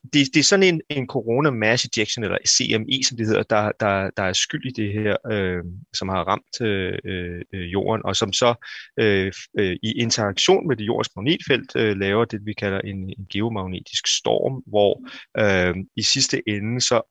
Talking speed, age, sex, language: 195 wpm, 30-49, male, Danish